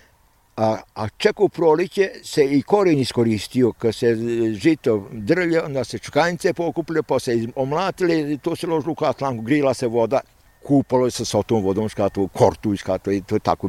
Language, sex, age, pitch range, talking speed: Croatian, male, 60-79, 105-140 Hz, 165 wpm